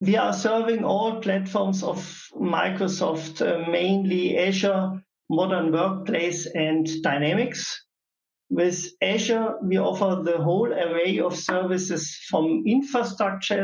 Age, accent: 50-69, German